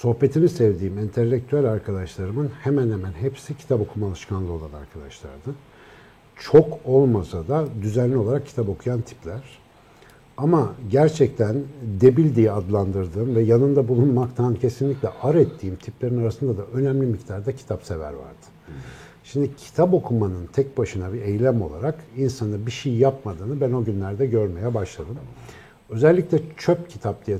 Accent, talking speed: native, 130 wpm